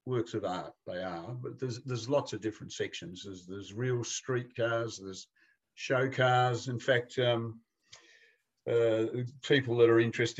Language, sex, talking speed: English, male, 160 wpm